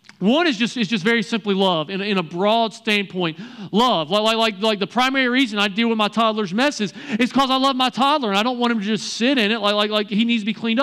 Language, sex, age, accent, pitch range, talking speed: English, male, 40-59, American, 205-245 Hz, 275 wpm